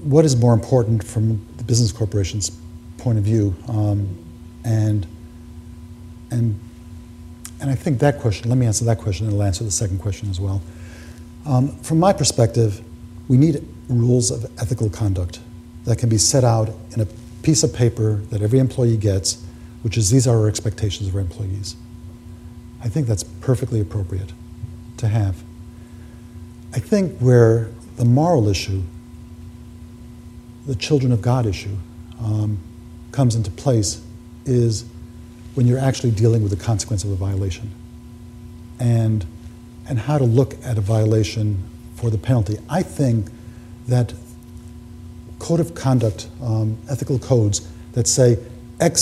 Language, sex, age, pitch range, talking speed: English, male, 50-69, 85-120 Hz, 150 wpm